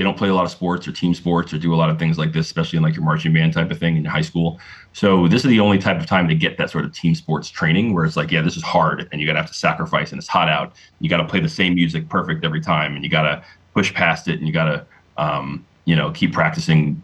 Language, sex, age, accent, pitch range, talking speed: English, male, 30-49, American, 80-100 Hz, 315 wpm